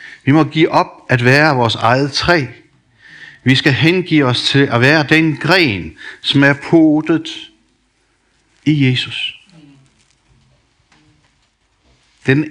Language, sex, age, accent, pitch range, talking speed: Danish, male, 60-79, native, 120-165 Hz, 115 wpm